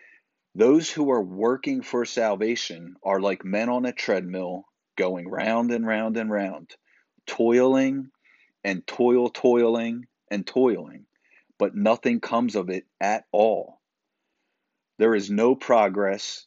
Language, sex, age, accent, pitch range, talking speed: English, male, 40-59, American, 100-125 Hz, 130 wpm